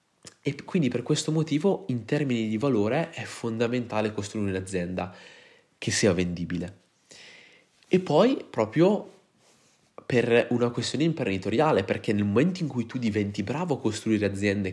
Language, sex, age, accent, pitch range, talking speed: Italian, male, 20-39, native, 100-125 Hz, 140 wpm